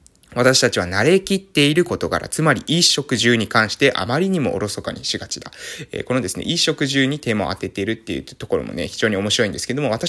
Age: 20-39